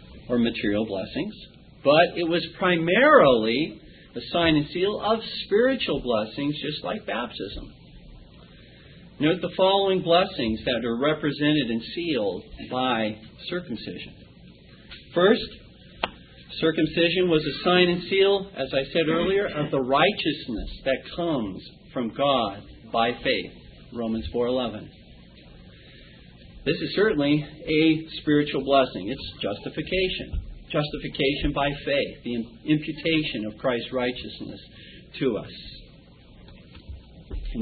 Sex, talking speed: male, 110 wpm